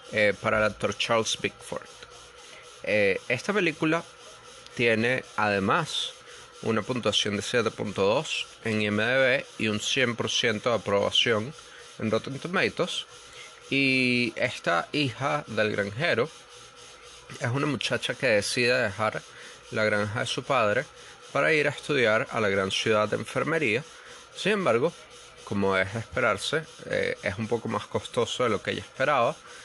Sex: male